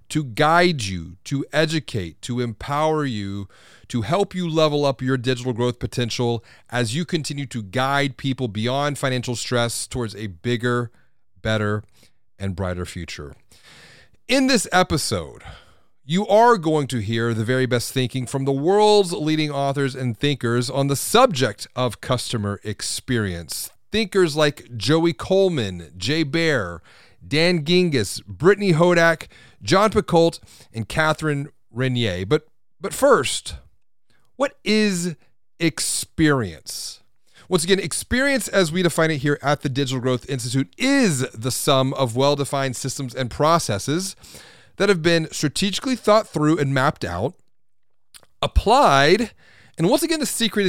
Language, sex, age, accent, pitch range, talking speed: English, male, 30-49, American, 120-170 Hz, 135 wpm